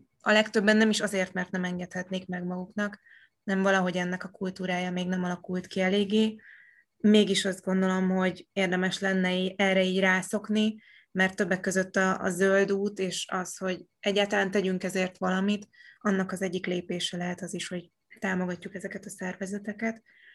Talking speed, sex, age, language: 160 wpm, female, 20-39, Hungarian